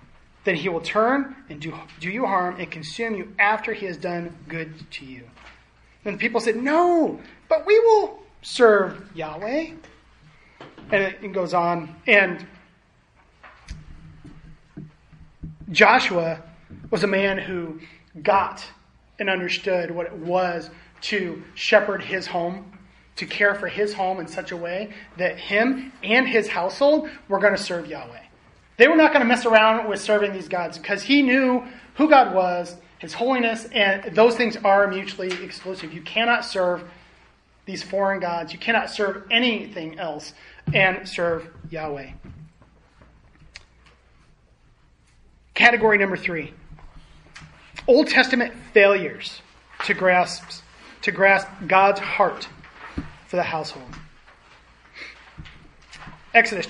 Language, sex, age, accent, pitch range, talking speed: English, male, 30-49, American, 170-220 Hz, 130 wpm